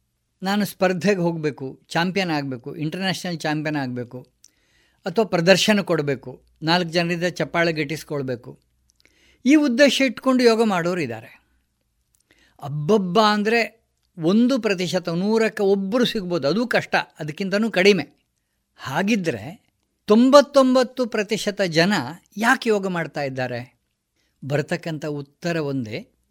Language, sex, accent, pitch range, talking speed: Kannada, female, native, 155-220 Hz, 100 wpm